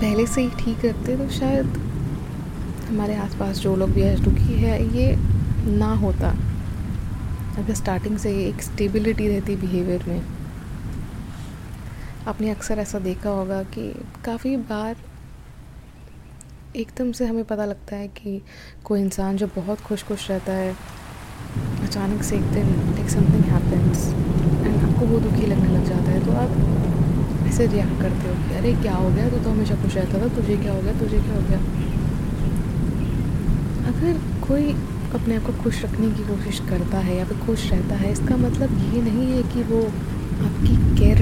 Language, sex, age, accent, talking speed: Hindi, female, 20-39, native, 165 wpm